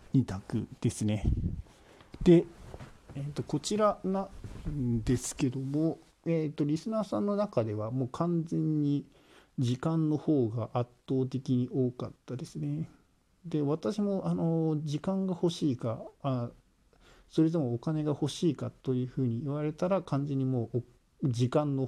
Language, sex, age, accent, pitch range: Japanese, male, 50-69, native, 115-155 Hz